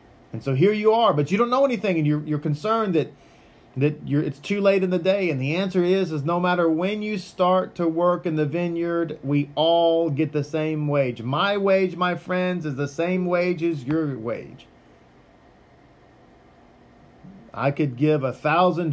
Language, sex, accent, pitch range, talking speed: English, male, American, 140-180 Hz, 190 wpm